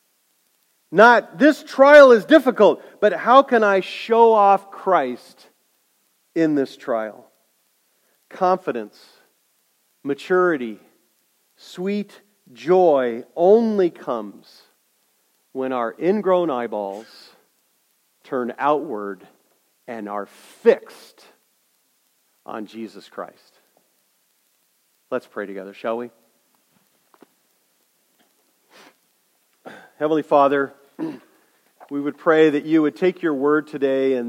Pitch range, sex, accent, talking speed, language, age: 135-175 Hz, male, American, 90 wpm, English, 50-69